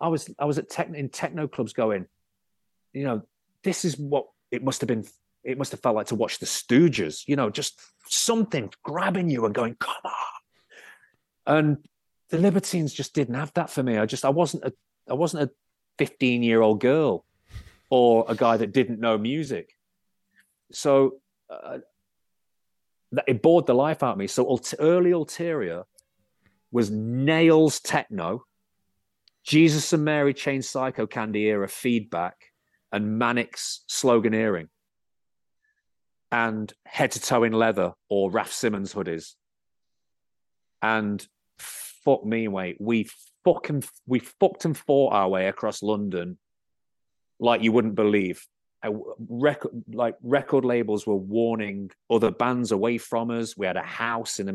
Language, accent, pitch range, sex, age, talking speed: English, British, 105-145 Hz, male, 30-49, 150 wpm